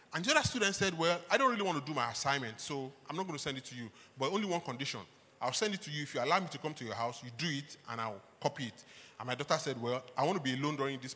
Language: English